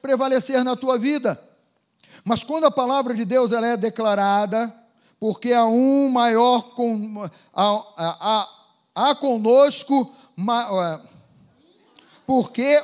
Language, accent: Portuguese, Brazilian